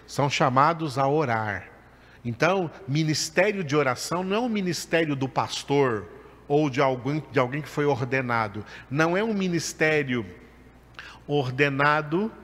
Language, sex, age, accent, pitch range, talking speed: Portuguese, male, 50-69, Brazilian, 125-165 Hz, 120 wpm